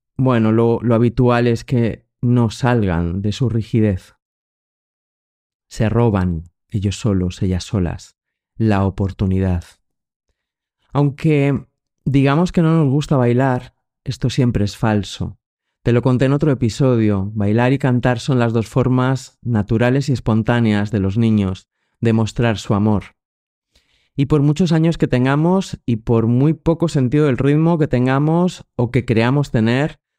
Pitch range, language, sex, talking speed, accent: 110-135 Hz, Spanish, male, 145 wpm, Spanish